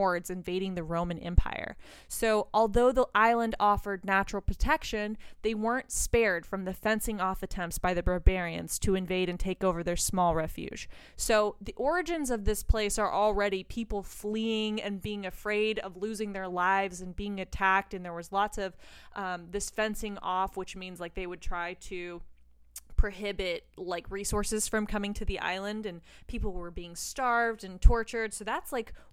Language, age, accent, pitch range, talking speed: English, 20-39, American, 190-215 Hz, 175 wpm